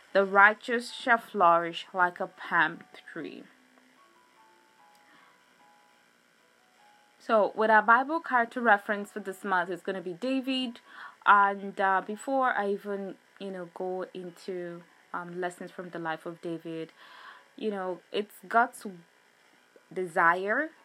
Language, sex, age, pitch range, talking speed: English, female, 20-39, 180-215 Hz, 125 wpm